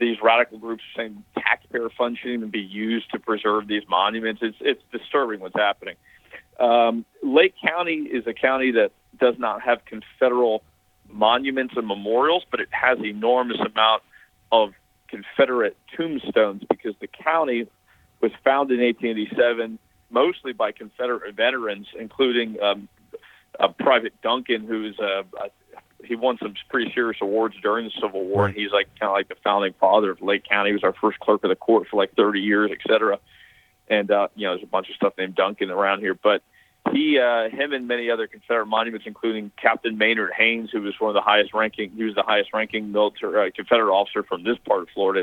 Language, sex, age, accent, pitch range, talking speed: English, male, 40-59, American, 105-120 Hz, 195 wpm